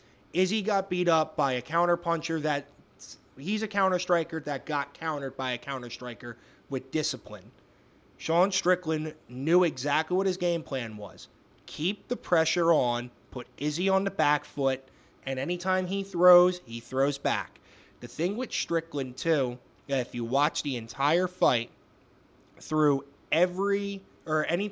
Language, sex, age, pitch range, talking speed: English, male, 20-39, 135-180 Hz, 155 wpm